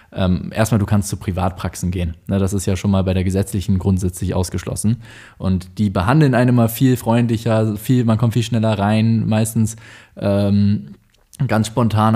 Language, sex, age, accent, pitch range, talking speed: German, male, 20-39, German, 95-115 Hz, 165 wpm